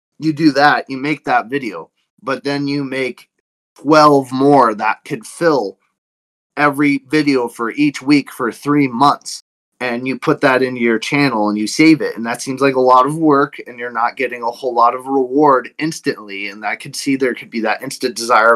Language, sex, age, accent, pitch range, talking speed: English, male, 20-39, American, 125-150 Hz, 205 wpm